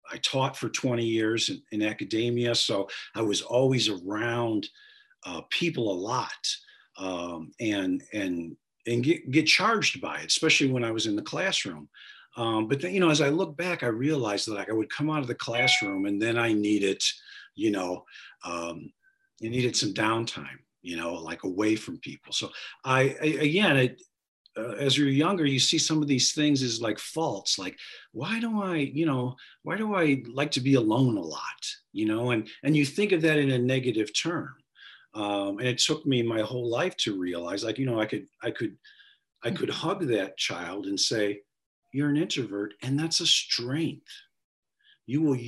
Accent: American